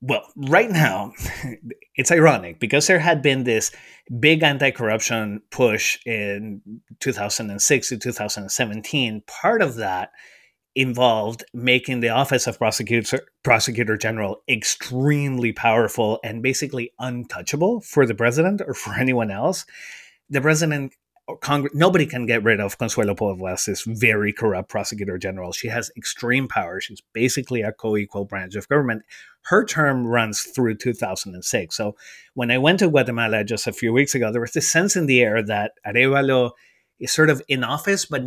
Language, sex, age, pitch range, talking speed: English, male, 30-49, 110-140 Hz, 150 wpm